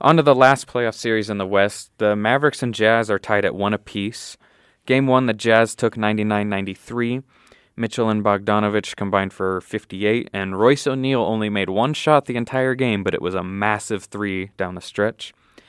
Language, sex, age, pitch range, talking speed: English, male, 20-39, 100-125 Hz, 185 wpm